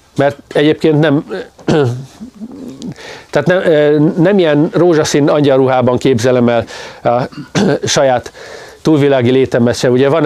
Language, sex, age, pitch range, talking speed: Hungarian, male, 40-59, 130-195 Hz, 105 wpm